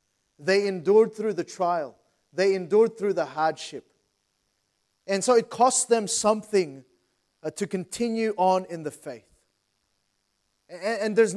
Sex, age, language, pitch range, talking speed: male, 30-49, English, 160-215 Hz, 135 wpm